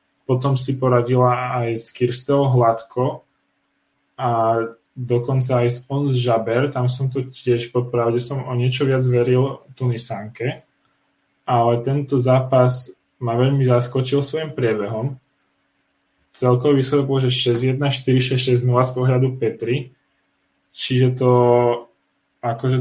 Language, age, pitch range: Czech, 10-29, 120-130 Hz